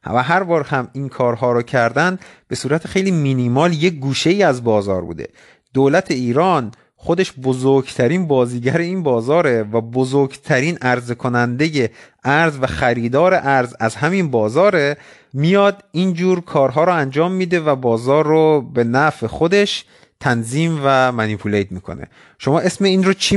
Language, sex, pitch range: Persian, male, 120-160 Hz